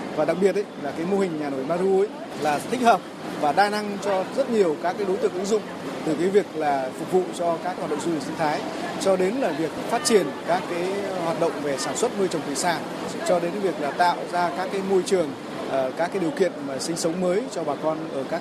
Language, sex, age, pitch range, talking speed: Vietnamese, male, 20-39, 155-195 Hz, 265 wpm